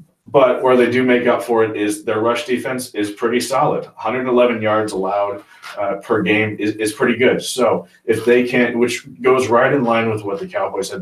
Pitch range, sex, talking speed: 100-120 Hz, male, 210 wpm